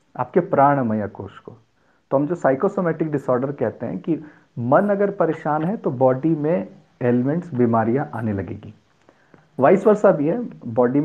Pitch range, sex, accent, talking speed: 120-175 Hz, male, native, 150 wpm